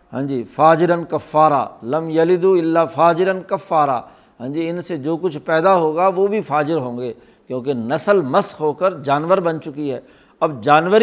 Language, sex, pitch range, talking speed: Urdu, male, 145-175 Hz, 180 wpm